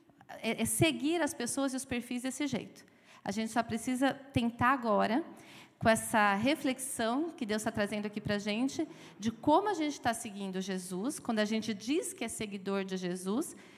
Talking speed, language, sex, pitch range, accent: 185 wpm, Portuguese, female, 215-275 Hz, Brazilian